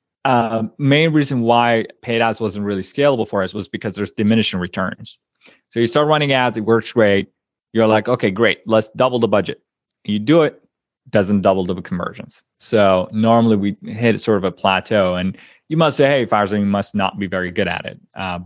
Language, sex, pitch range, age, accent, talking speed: English, male, 95-120 Hz, 20-39, American, 200 wpm